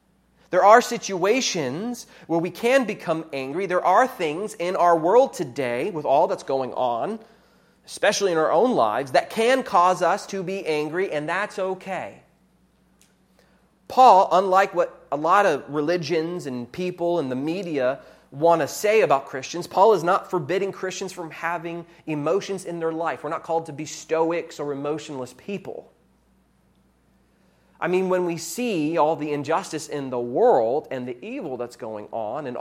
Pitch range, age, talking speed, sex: 160-230 Hz, 30-49, 165 wpm, male